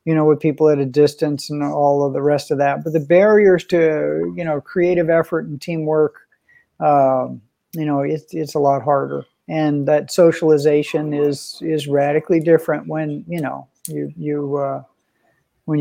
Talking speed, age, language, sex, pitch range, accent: 175 wpm, 50-69, English, male, 150-175 Hz, American